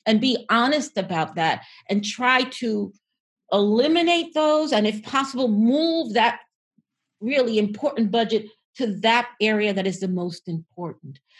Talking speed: 135 wpm